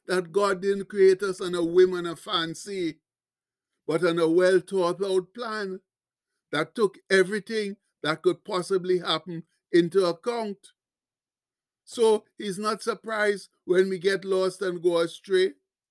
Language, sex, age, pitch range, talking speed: English, male, 60-79, 170-200 Hz, 135 wpm